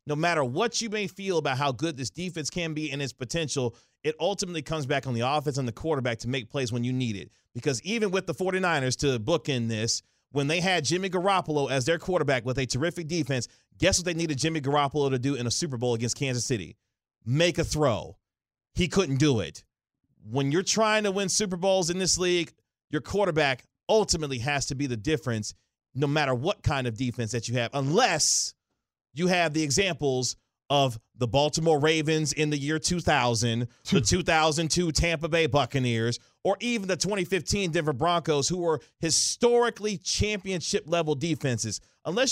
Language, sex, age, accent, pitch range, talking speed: English, male, 30-49, American, 125-180 Hz, 190 wpm